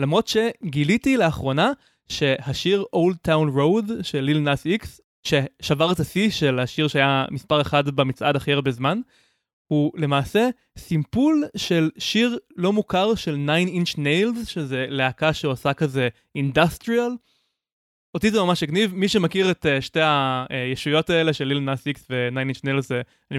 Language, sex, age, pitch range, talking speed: Hebrew, male, 20-39, 140-195 Hz, 145 wpm